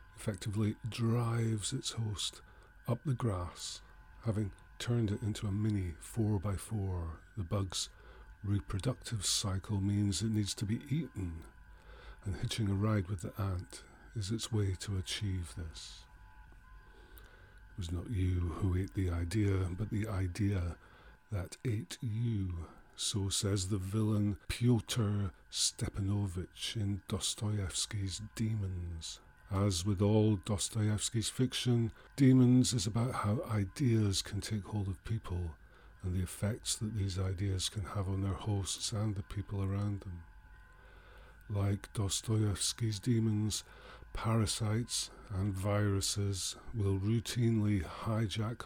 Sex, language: male, English